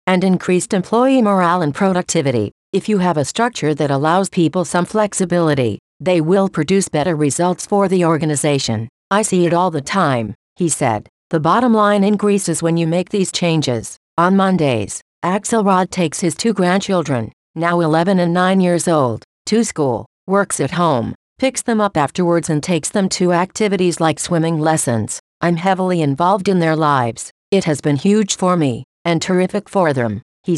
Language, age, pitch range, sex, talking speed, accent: English, 50-69, 155-190 Hz, female, 175 wpm, American